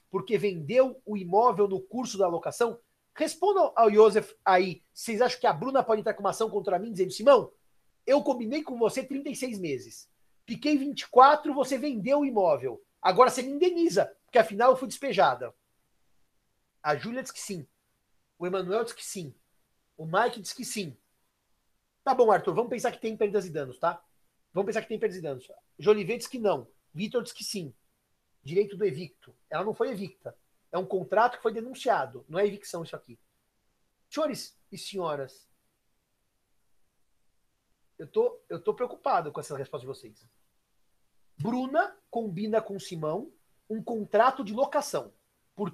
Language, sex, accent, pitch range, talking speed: Portuguese, male, Brazilian, 185-255 Hz, 170 wpm